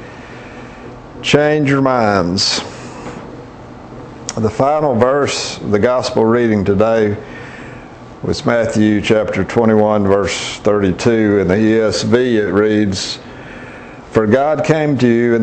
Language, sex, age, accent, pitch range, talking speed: English, male, 60-79, American, 100-125 Hz, 110 wpm